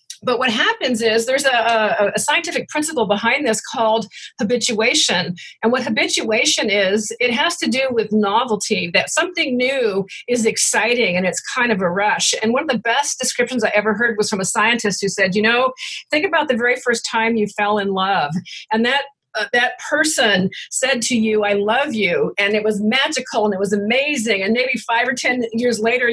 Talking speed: 200 wpm